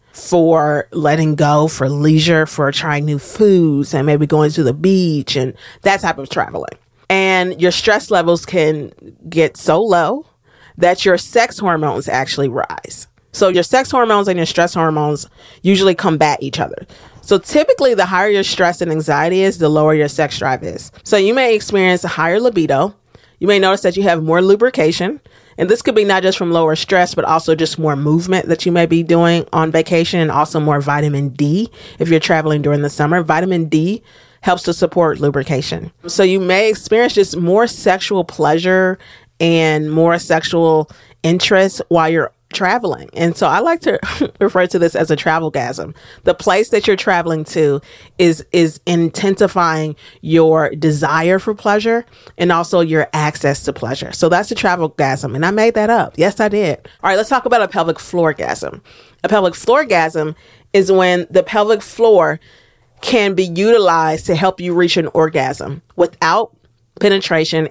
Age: 40-59